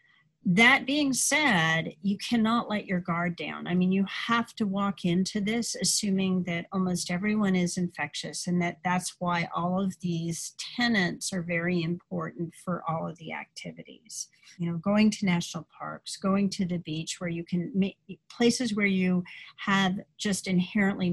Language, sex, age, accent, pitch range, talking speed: English, female, 40-59, American, 175-205 Hz, 170 wpm